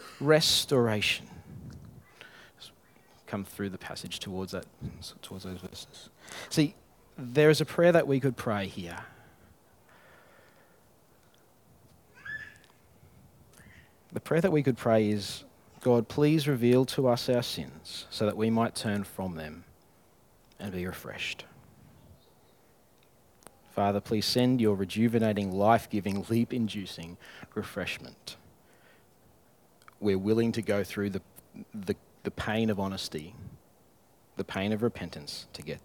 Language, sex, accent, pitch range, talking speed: English, male, Australian, 100-135 Hz, 115 wpm